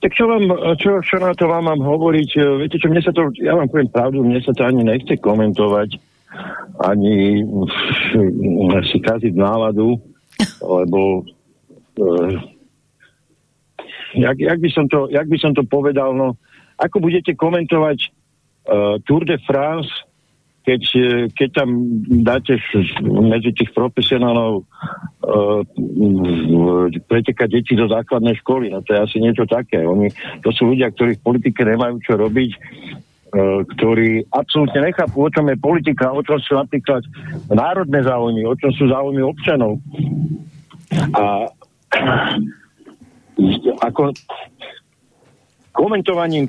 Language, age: Slovak, 50-69